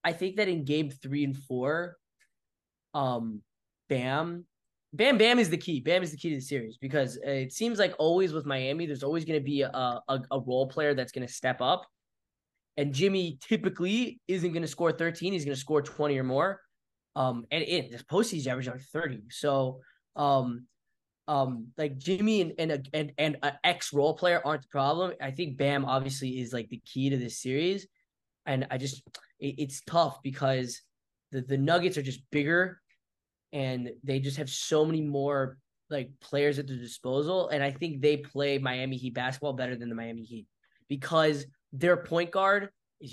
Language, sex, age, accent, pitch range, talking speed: English, male, 10-29, American, 135-170 Hz, 190 wpm